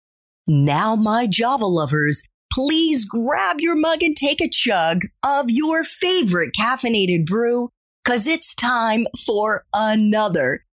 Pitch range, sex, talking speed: 165-255 Hz, female, 125 wpm